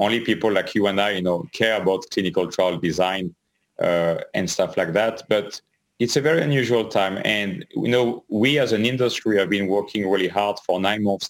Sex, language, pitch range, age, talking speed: male, English, 100-120 Hz, 30-49, 205 wpm